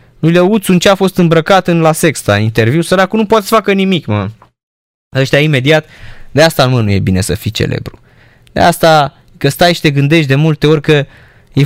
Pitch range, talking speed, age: 120-155 Hz, 210 wpm, 20-39